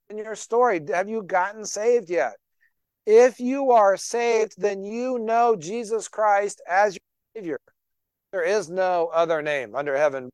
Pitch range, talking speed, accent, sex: 145-210 Hz, 155 wpm, American, male